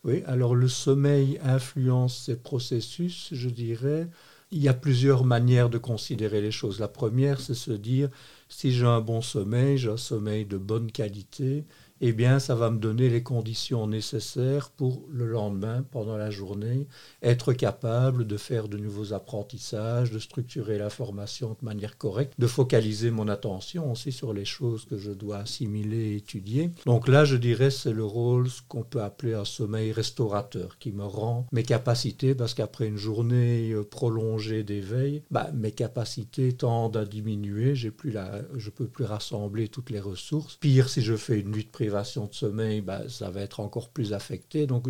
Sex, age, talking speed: male, 50-69, 185 wpm